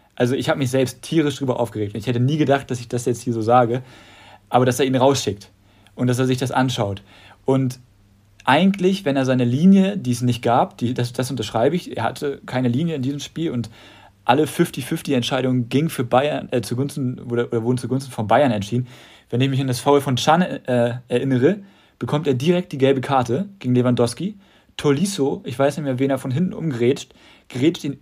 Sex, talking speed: male, 210 wpm